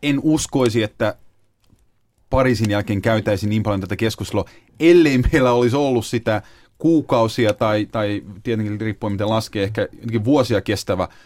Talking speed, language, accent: 140 wpm, Finnish, native